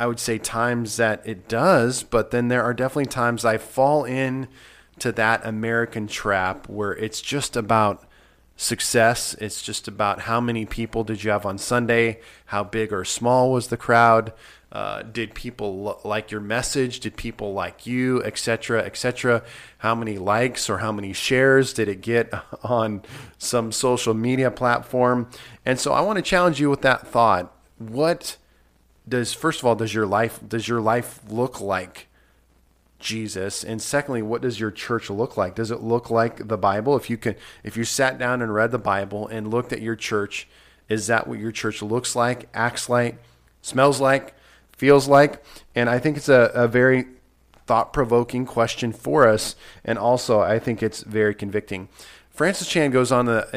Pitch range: 110-125 Hz